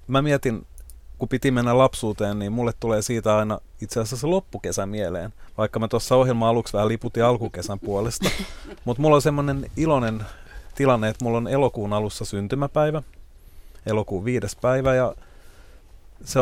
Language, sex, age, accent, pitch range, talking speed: Finnish, male, 30-49, native, 100-120 Hz, 150 wpm